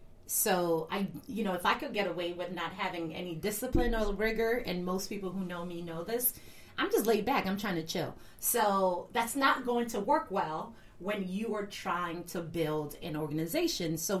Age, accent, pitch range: 30-49, American, 160-205 Hz